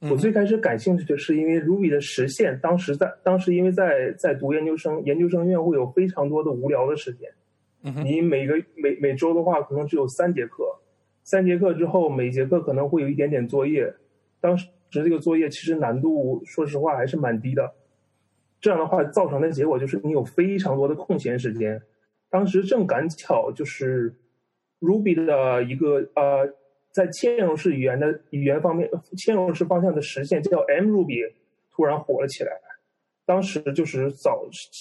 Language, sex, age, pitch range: Chinese, male, 30-49, 135-180 Hz